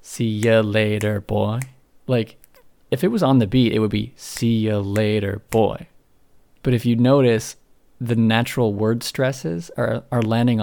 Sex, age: male, 20-39